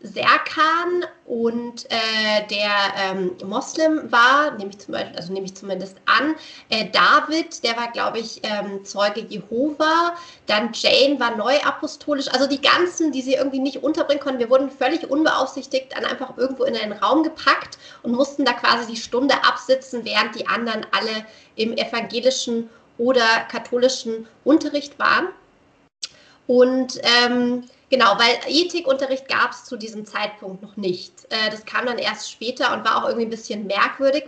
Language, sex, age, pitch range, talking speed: German, female, 30-49, 230-290 Hz, 150 wpm